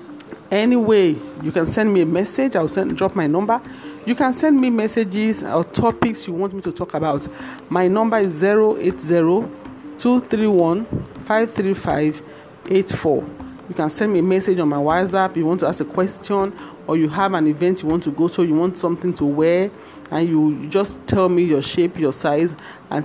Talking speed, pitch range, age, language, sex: 180 wpm, 160-195 Hz, 40-59, English, male